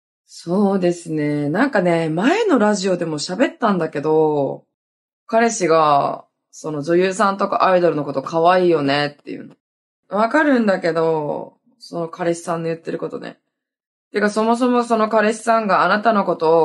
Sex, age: female, 20-39